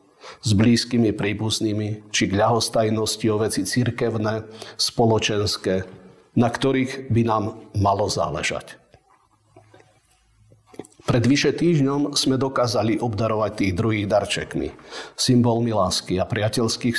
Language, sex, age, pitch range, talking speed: Slovak, male, 50-69, 105-120 Hz, 100 wpm